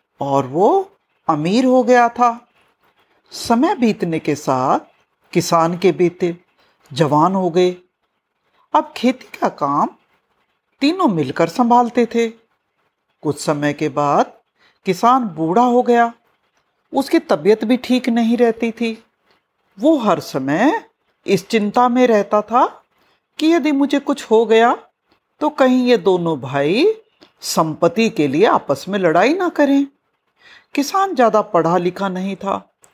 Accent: native